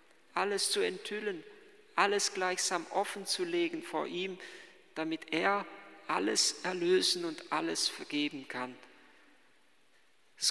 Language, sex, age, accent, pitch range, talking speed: German, male, 50-69, German, 205-290 Hz, 95 wpm